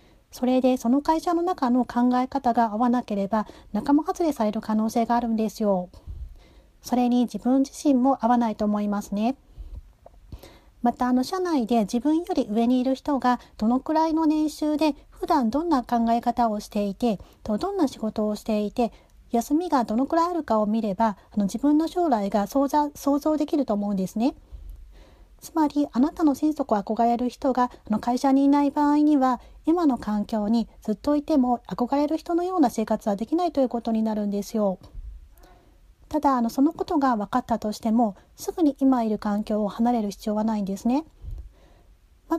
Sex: female